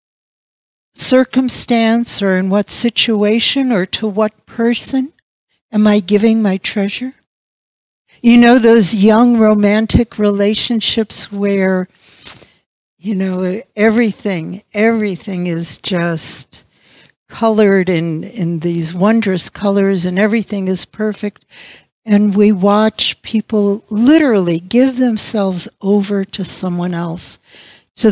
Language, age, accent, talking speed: English, 60-79, American, 105 wpm